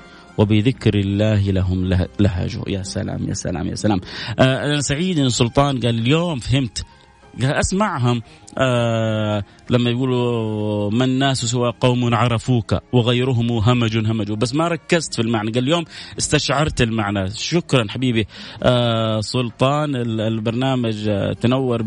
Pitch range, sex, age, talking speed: 115-180 Hz, male, 30-49, 125 wpm